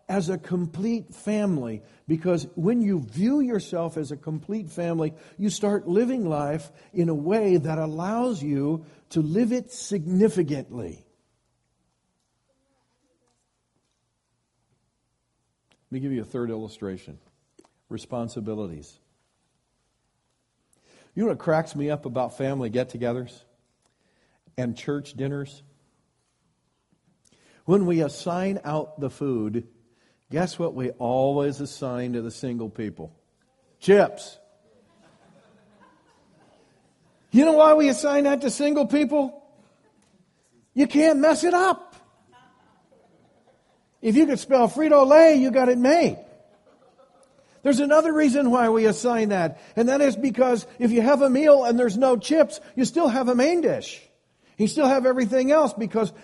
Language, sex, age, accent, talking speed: English, male, 50-69, American, 125 wpm